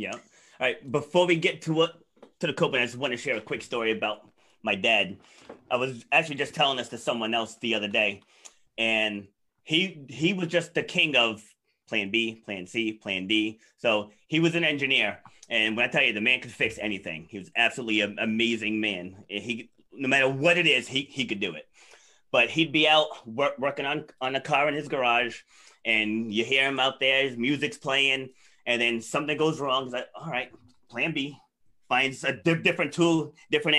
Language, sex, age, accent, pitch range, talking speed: English, male, 30-49, American, 115-150 Hz, 210 wpm